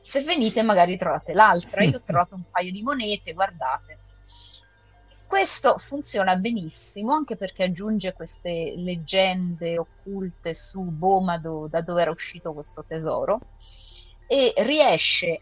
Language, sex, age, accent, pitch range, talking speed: Italian, female, 30-49, native, 160-205 Hz, 125 wpm